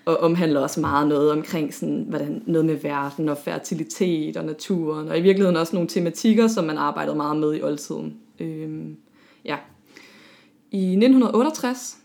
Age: 20-39